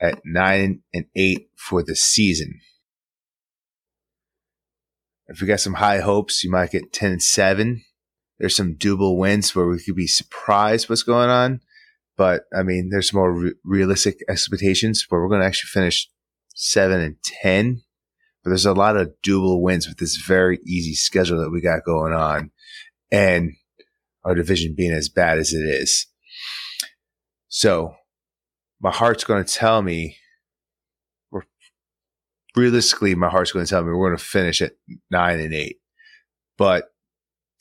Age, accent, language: 30-49, American, English